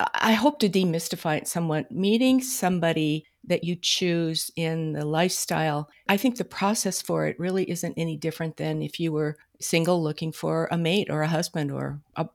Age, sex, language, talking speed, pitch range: 50-69, female, English, 185 wpm, 145-175 Hz